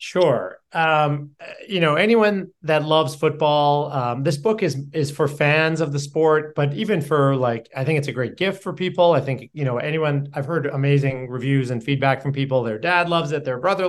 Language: English